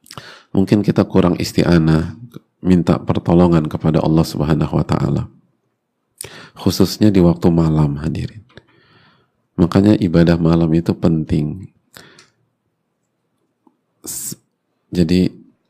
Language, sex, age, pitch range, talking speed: Indonesian, male, 40-59, 80-95 Hz, 85 wpm